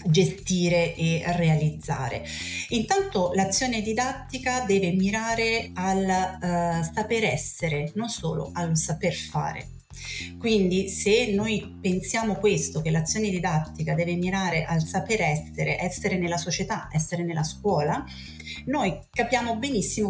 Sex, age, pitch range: female, 30-49, 160-200 Hz